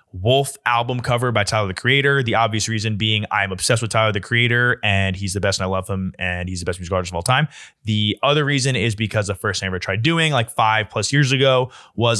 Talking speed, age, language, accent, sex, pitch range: 255 wpm, 20-39, English, American, male, 105-130 Hz